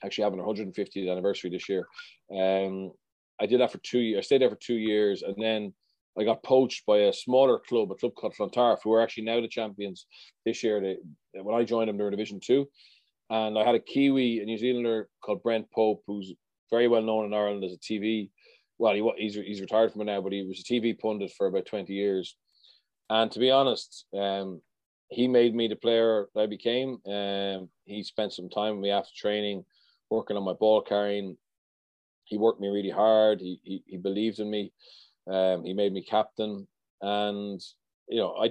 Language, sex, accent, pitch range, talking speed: English, male, Irish, 95-115 Hz, 210 wpm